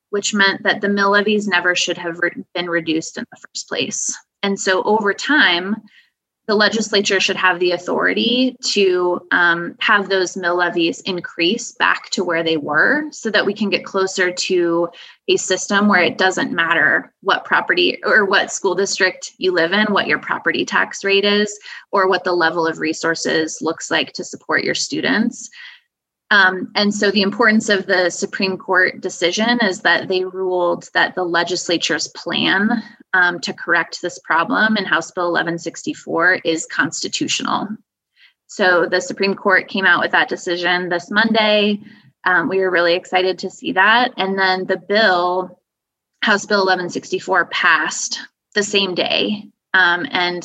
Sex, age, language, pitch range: female, 20-39, English, 175-210 Hz